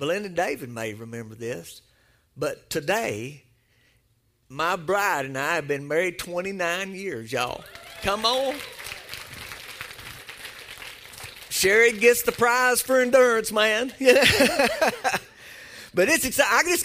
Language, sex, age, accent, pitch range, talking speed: English, male, 50-69, American, 135-220 Hz, 105 wpm